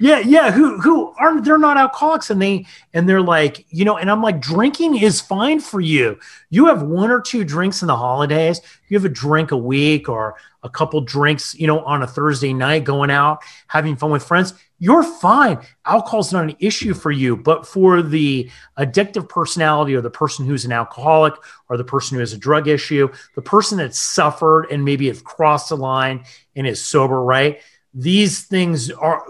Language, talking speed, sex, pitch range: English, 205 wpm, male, 140-185 Hz